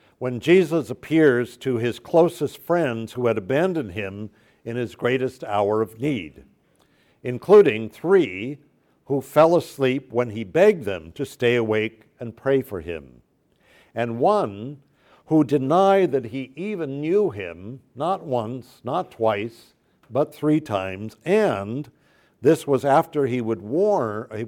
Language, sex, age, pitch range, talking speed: English, male, 60-79, 110-150 Hz, 135 wpm